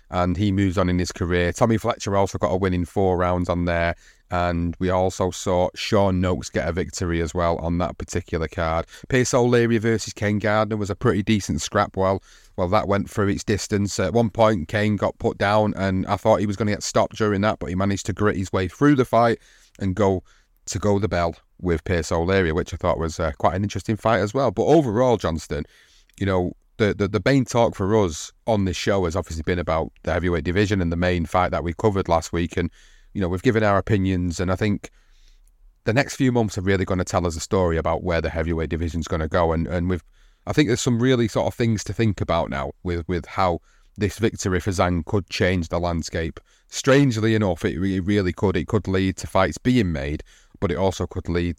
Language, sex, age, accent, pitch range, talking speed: English, male, 30-49, British, 85-105 Hz, 235 wpm